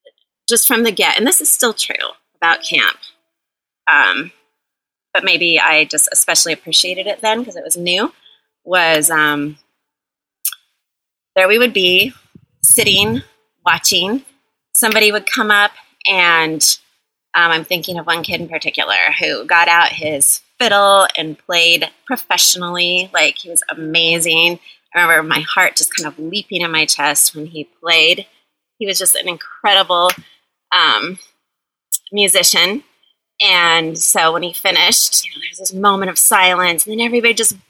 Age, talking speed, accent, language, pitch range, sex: 30-49, 150 wpm, American, English, 170-205 Hz, female